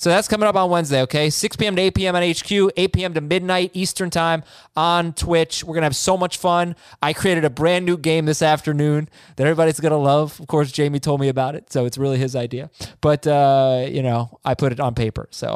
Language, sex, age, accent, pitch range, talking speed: English, male, 20-39, American, 145-200 Hz, 245 wpm